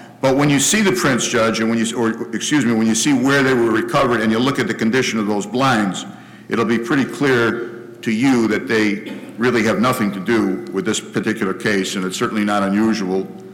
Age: 60-79